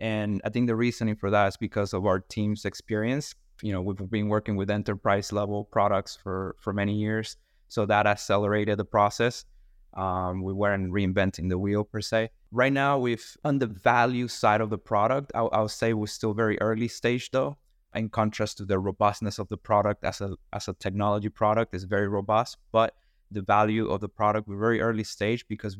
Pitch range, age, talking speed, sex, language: 100-115 Hz, 20-39, 200 wpm, male, English